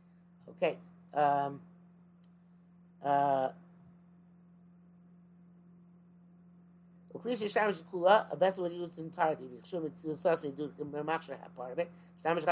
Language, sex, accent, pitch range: English, male, American, 150-175 Hz